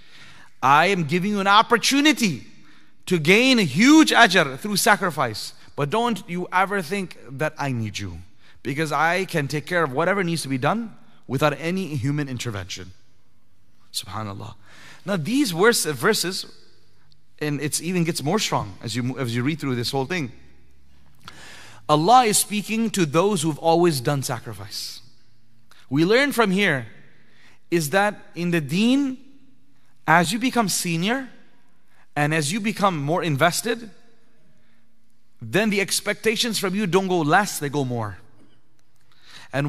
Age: 30-49